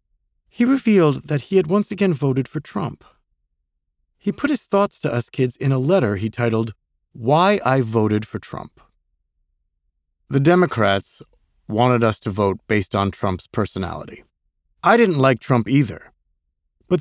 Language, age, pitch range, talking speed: English, 40-59, 100-150 Hz, 150 wpm